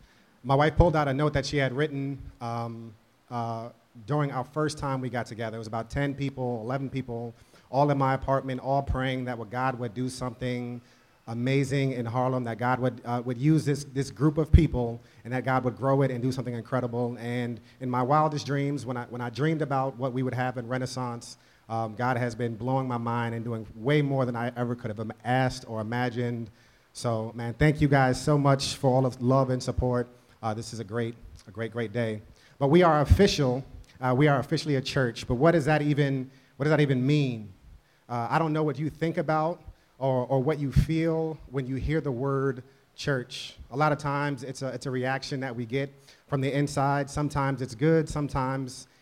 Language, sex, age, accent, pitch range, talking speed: English, male, 30-49, American, 120-140 Hz, 215 wpm